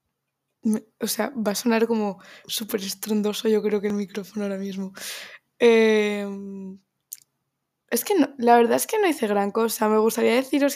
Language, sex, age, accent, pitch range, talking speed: Spanish, female, 20-39, Spanish, 210-230 Hz, 160 wpm